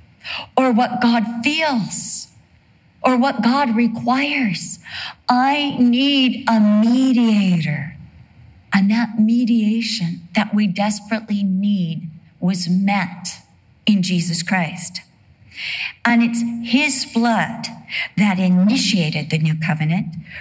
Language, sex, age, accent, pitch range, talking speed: English, female, 50-69, American, 170-235 Hz, 95 wpm